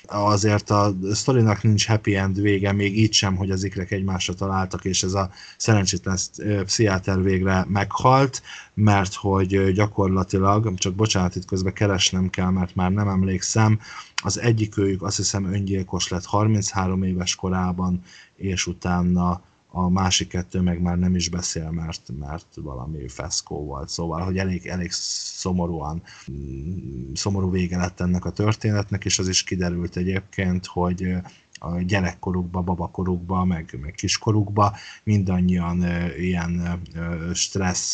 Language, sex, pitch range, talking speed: Hungarian, male, 90-100 Hz, 140 wpm